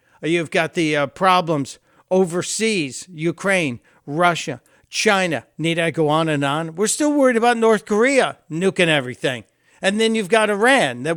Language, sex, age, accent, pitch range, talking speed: English, male, 60-79, American, 140-190 Hz, 155 wpm